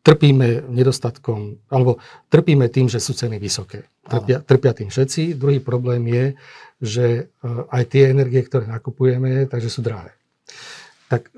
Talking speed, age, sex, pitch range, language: 135 wpm, 50-69, male, 120-140 Hz, Slovak